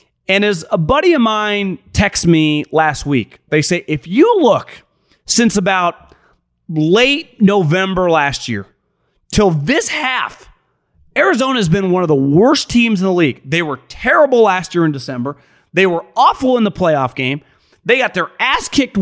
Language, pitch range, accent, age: English, 165-245 Hz, American, 30-49